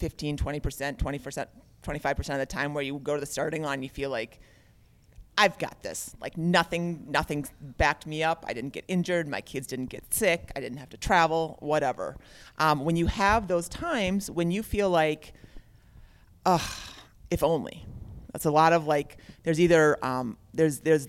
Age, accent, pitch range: 30-49, American, 145-180 Hz